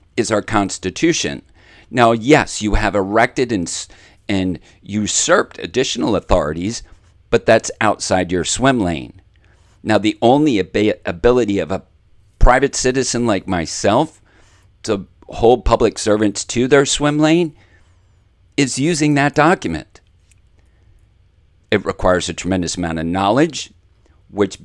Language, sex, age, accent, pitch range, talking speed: English, male, 50-69, American, 90-105 Hz, 120 wpm